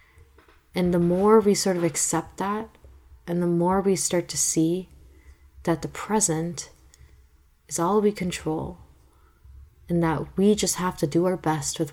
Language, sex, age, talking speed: English, female, 20-39, 160 wpm